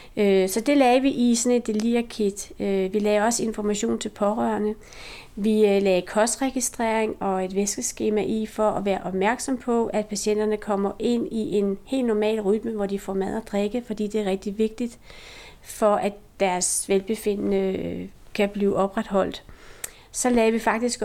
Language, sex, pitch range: Danish, female, 200-225 Hz